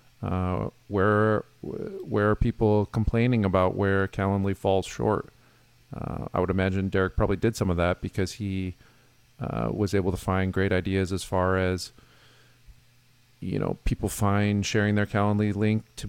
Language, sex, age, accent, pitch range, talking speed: English, male, 40-59, American, 95-120 Hz, 155 wpm